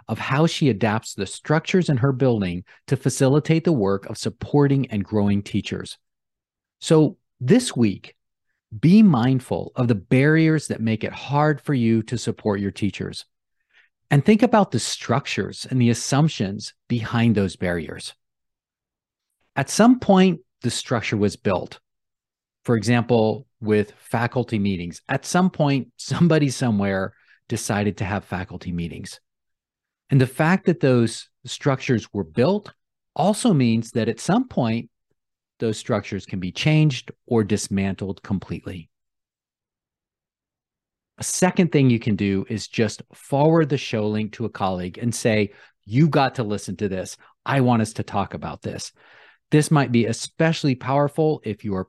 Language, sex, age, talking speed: English, male, 40-59, 150 wpm